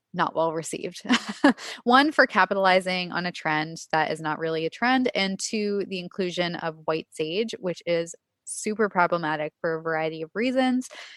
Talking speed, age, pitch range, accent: 165 wpm, 20-39, 165-210 Hz, American